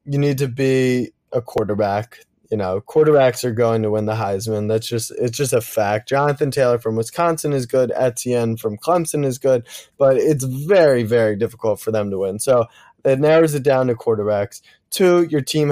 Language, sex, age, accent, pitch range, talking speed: English, male, 20-39, American, 115-140 Hz, 195 wpm